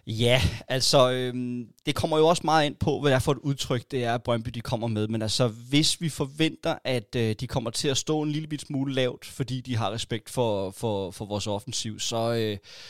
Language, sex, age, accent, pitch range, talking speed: Danish, male, 20-39, native, 115-140 Hz, 235 wpm